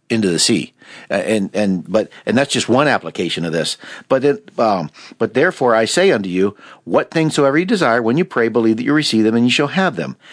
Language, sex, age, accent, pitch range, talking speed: English, male, 50-69, American, 110-150 Hz, 230 wpm